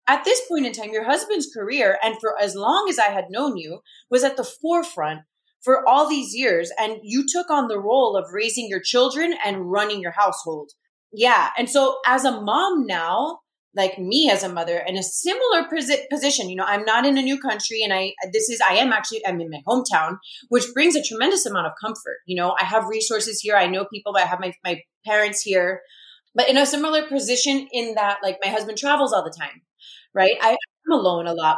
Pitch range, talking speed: 195-260 Hz, 220 wpm